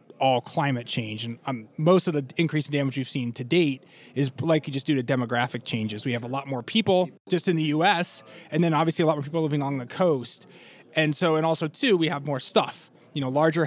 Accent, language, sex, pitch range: American, English, male, 135-165 Hz